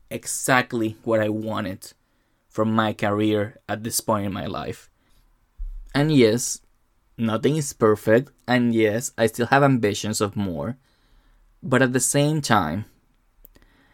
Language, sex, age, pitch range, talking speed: English, male, 20-39, 110-125 Hz, 135 wpm